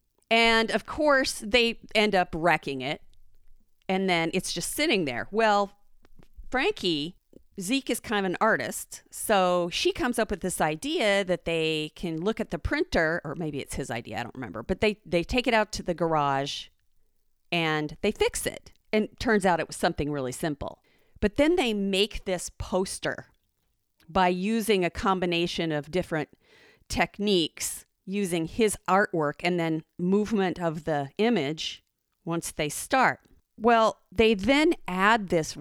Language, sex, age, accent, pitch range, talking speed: English, female, 40-59, American, 160-215 Hz, 160 wpm